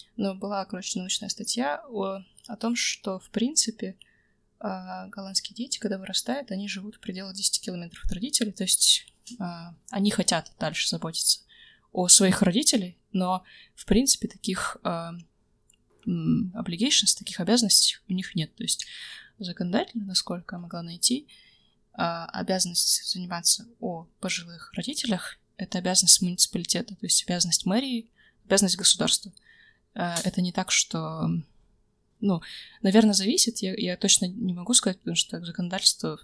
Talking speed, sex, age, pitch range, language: 130 wpm, female, 20-39, 185-225 Hz, Russian